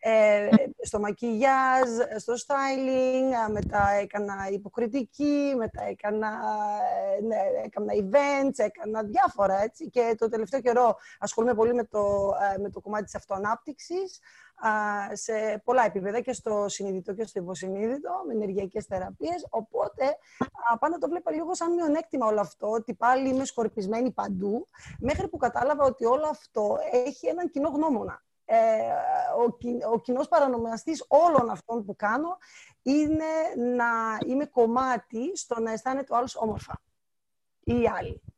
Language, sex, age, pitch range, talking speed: Greek, female, 20-39, 215-280 Hz, 135 wpm